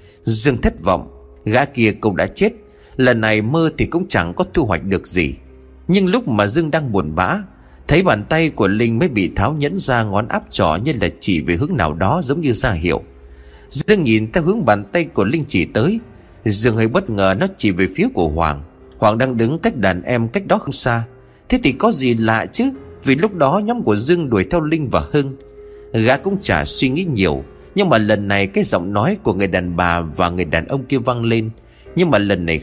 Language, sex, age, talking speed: Vietnamese, male, 30-49, 230 wpm